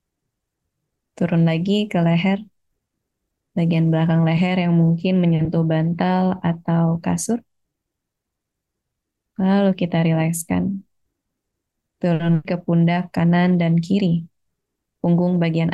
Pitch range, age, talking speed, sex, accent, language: 165-185 Hz, 20-39, 90 wpm, female, native, Indonesian